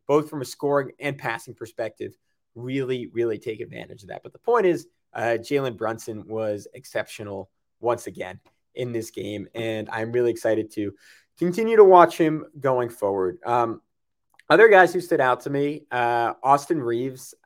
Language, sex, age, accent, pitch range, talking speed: English, male, 20-39, American, 120-165 Hz, 170 wpm